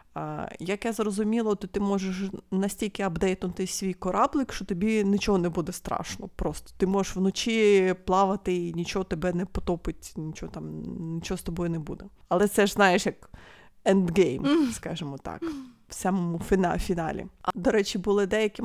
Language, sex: Ukrainian, female